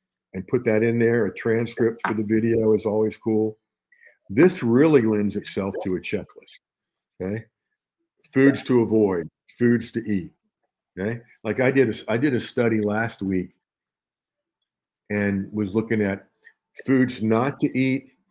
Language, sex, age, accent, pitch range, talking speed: English, male, 50-69, American, 105-130 Hz, 150 wpm